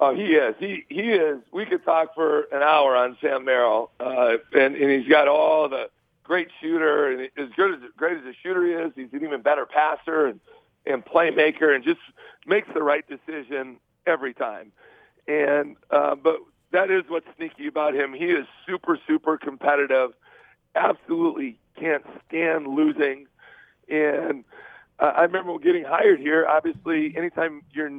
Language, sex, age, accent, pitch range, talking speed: English, male, 50-69, American, 150-185 Hz, 170 wpm